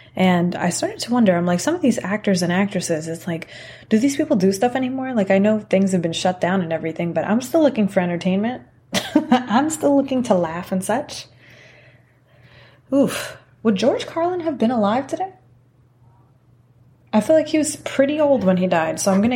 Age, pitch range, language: 20-39, 145-200 Hz, English